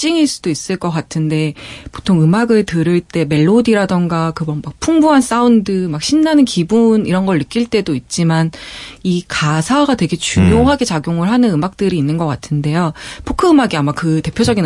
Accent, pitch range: native, 160-230 Hz